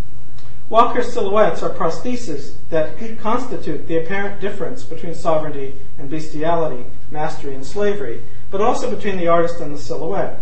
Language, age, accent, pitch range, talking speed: English, 50-69, American, 130-175 Hz, 140 wpm